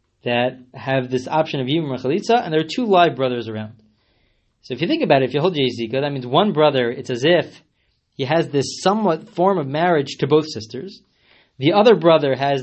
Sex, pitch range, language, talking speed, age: male, 125-175 Hz, English, 220 wpm, 30-49